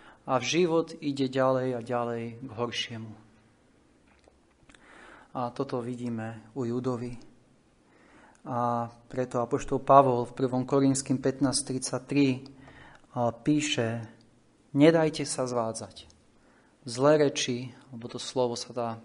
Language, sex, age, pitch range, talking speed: Slovak, male, 30-49, 115-140 Hz, 105 wpm